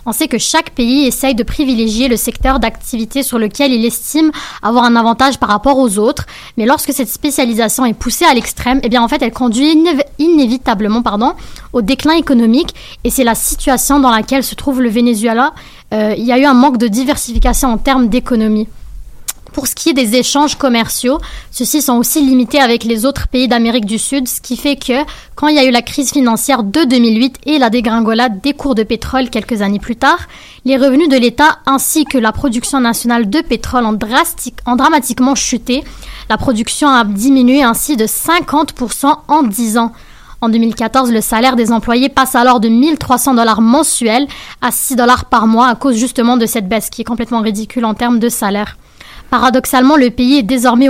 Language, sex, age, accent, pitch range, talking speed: French, female, 20-39, French, 235-275 Hz, 195 wpm